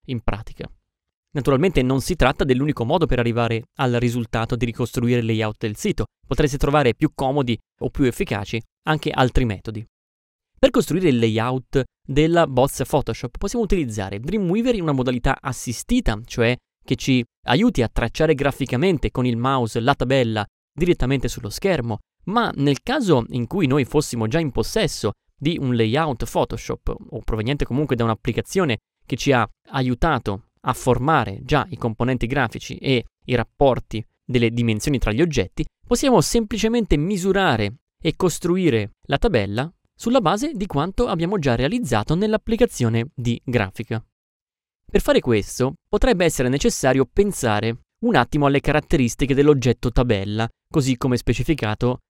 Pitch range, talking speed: 115-155 Hz, 145 wpm